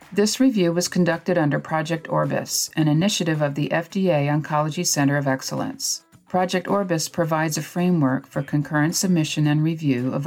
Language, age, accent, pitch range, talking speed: English, 50-69, American, 140-170 Hz, 160 wpm